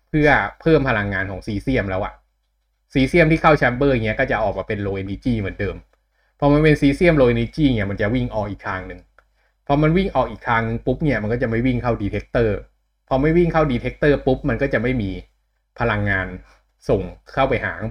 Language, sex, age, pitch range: Thai, male, 20-39, 95-135 Hz